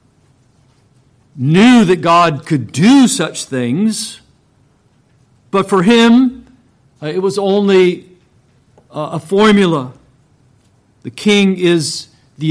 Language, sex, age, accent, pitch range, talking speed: English, male, 50-69, American, 130-165 Hz, 90 wpm